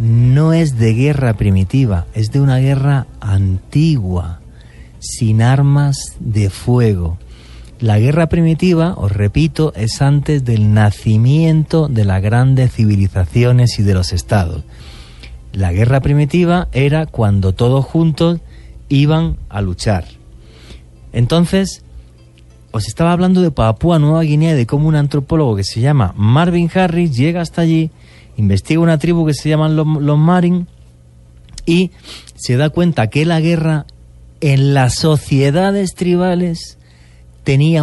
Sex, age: male, 30-49